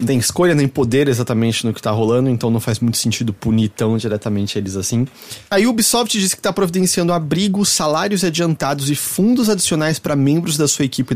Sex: male